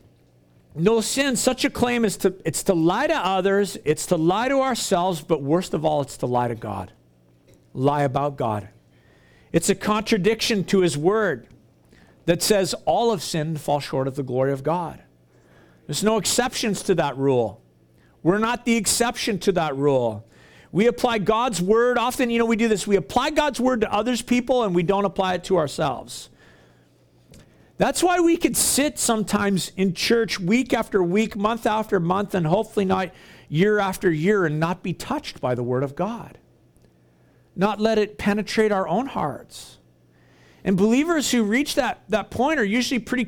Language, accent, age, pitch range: English, American, 50-69, 155-230 Hz